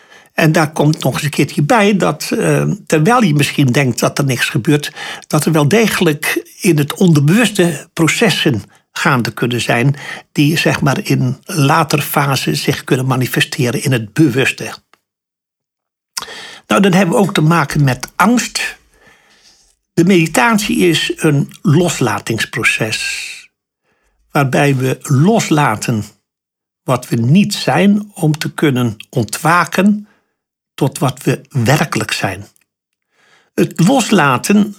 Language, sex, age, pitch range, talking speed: Dutch, male, 60-79, 140-190 Hz, 120 wpm